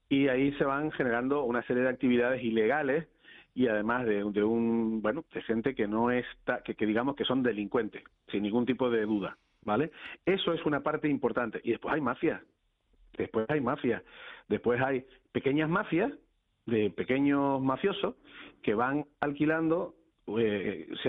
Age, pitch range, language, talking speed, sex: 40-59, 115-150 Hz, Spanish, 160 wpm, male